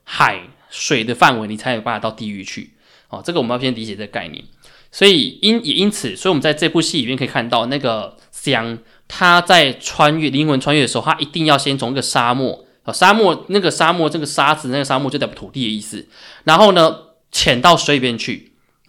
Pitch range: 115-150 Hz